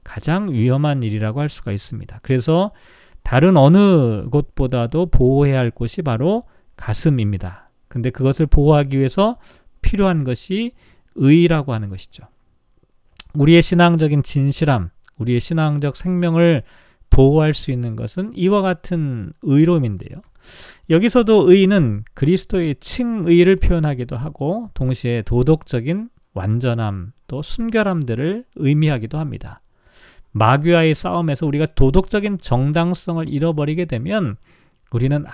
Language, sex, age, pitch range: Korean, male, 40-59, 125-180 Hz